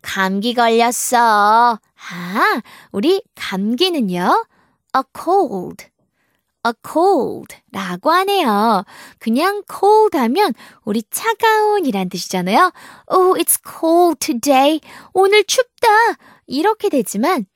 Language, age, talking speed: English, 20-39, 90 wpm